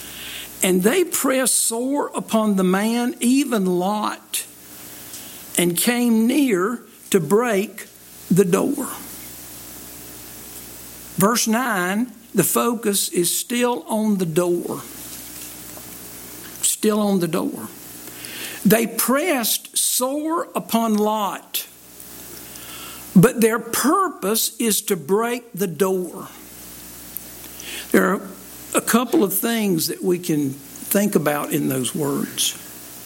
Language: English